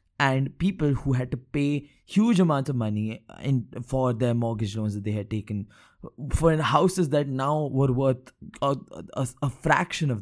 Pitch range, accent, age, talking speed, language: 115-145 Hz, Indian, 20-39, 175 wpm, English